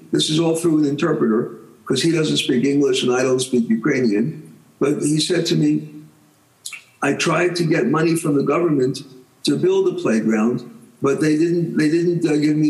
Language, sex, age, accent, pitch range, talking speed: English, male, 60-79, American, 130-160 Hz, 195 wpm